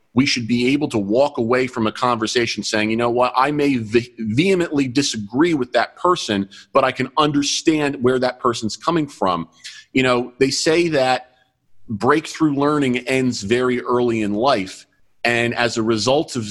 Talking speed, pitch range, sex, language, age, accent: 170 wpm, 110-130 Hz, male, English, 40-59, American